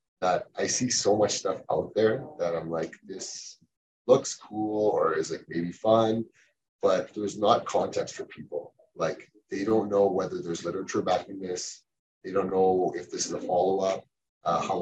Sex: male